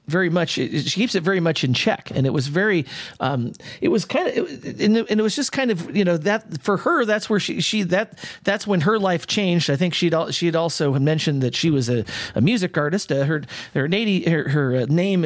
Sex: male